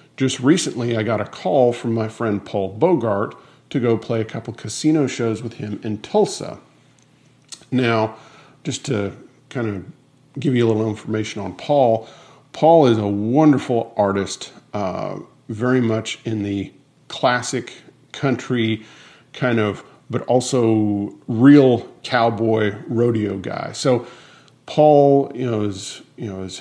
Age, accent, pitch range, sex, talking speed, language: 40-59, American, 110-130 Hz, male, 140 wpm, English